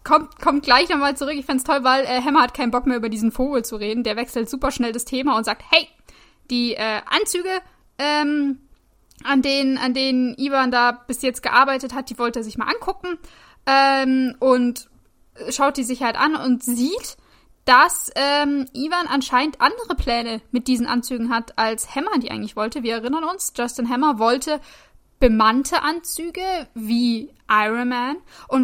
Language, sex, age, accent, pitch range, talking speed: German, female, 10-29, German, 245-300 Hz, 180 wpm